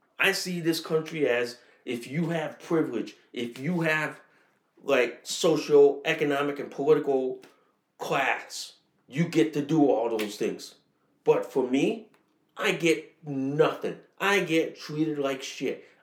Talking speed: 135 wpm